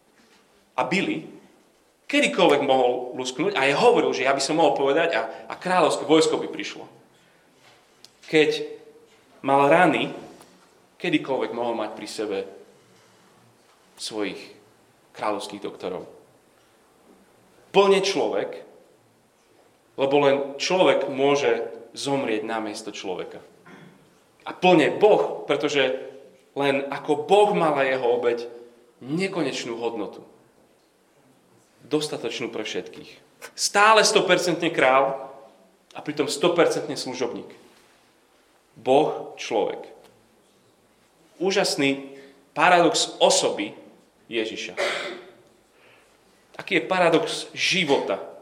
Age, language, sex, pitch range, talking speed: 30-49, Slovak, male, 135-210 Hz, 90 wpm